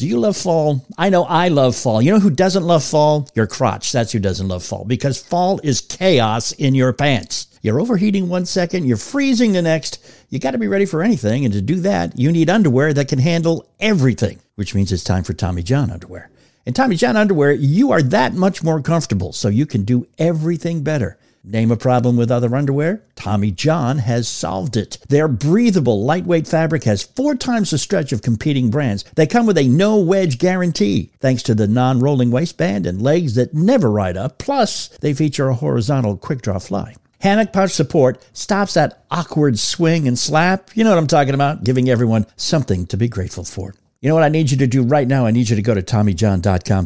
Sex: male